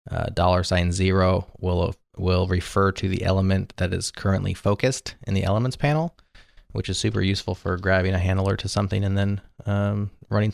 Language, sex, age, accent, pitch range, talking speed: English, male, 20-39, American, 95-115 Hz, 180 wpm